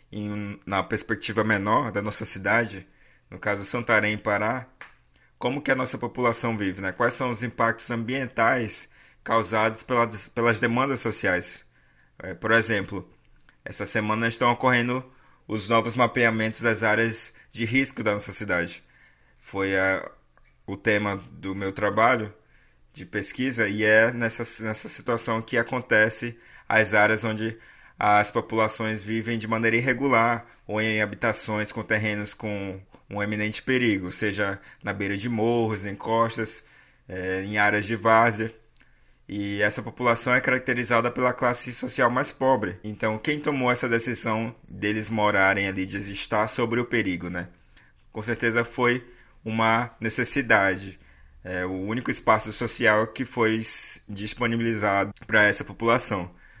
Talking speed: 140 wpm